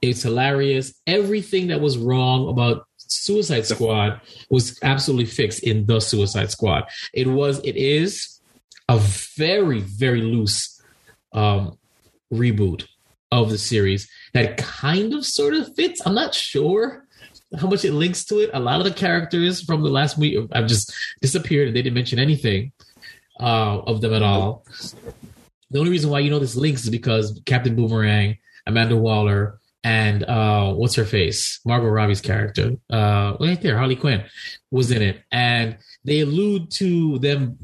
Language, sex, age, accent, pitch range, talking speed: English, male, 30-49, American, 110-145 Hz, 160 wpm